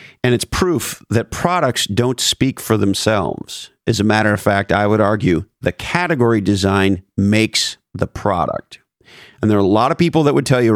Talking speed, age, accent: 190 wpm, 40-59, American